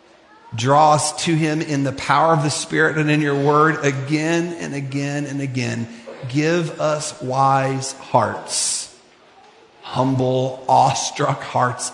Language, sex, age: English, male, 40-59